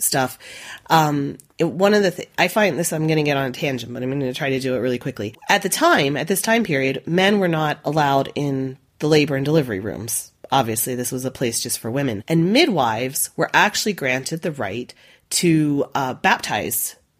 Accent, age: American, 30-49